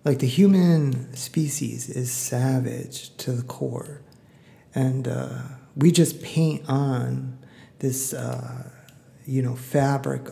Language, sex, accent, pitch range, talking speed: English, male, American, 130-150 Hz, 115 wpm